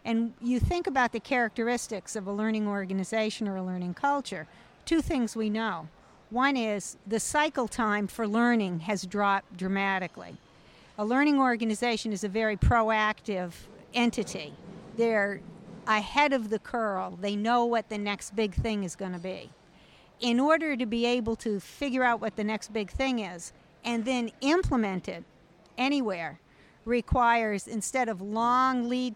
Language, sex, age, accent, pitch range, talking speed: English, female, 50-69, American, 200-245 Hz, 155 wpm